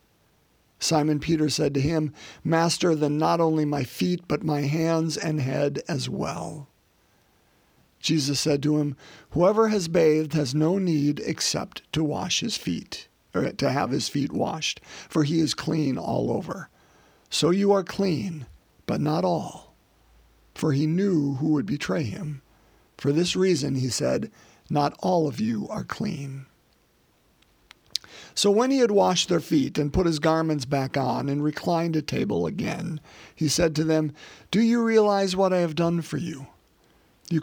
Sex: male